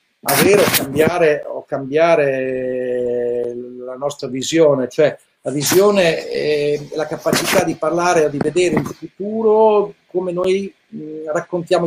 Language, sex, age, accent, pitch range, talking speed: Italian, male, 50-69, native, 135-165 Hz, 125 wpm